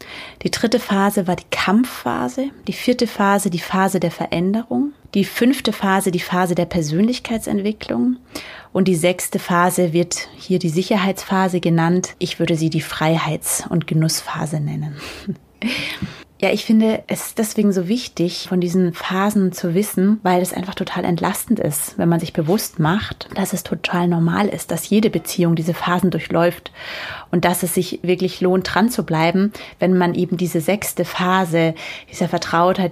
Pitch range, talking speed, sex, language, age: 175-205 Hz, 160 wpm, female, German, 30-49